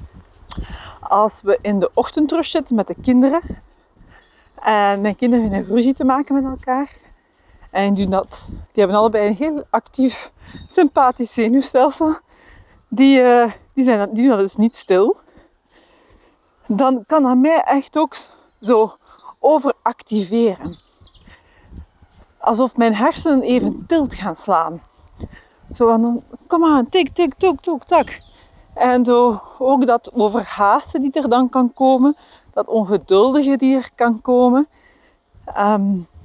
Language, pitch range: Dutch, 205-265 Hz